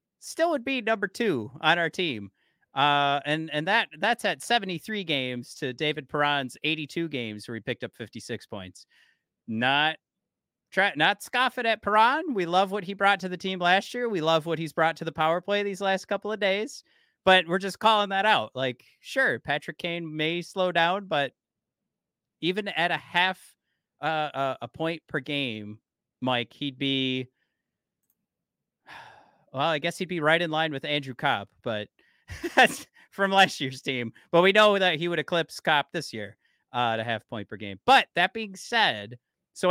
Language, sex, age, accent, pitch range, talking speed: English, male, 30-49, American, 130-190 Hz, 185 wpm